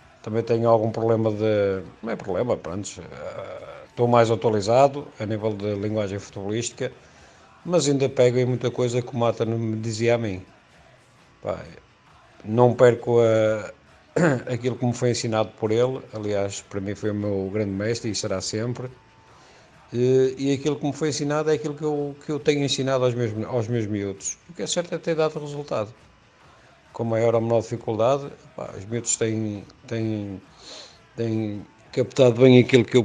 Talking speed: 170 wpm